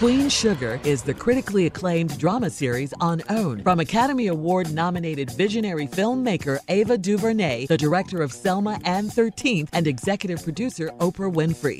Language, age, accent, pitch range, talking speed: English, 50-69, American, 150-220 Hz, 140 wpm